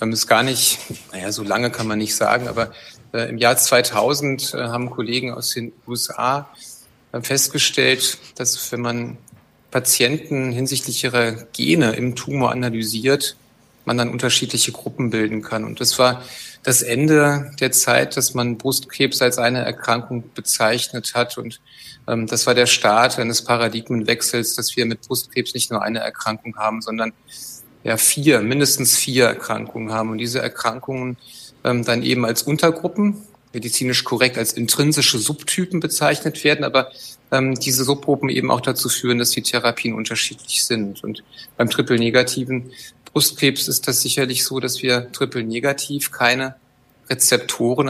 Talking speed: 150 wpm